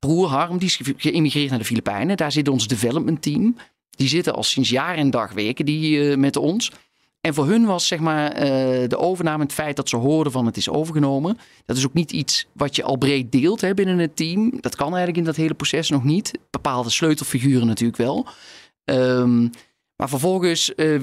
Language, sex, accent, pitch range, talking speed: Dutch, male, Dutch, 135-170 Hz, 195 wpm